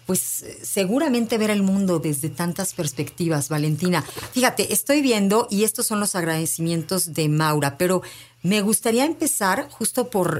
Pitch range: 155-195 Hz